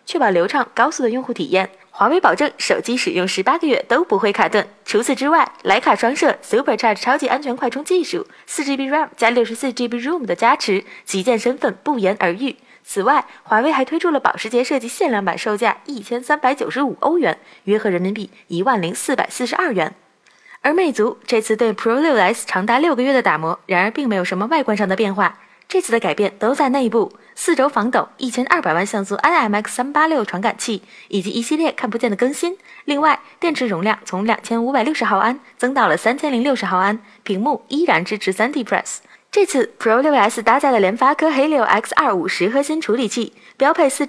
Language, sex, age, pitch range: Chinese, female, 20-39, 210-285 Hz